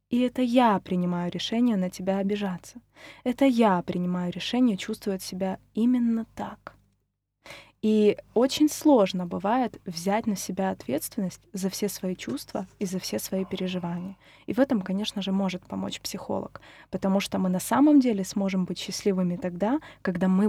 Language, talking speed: Russian, 155 wpm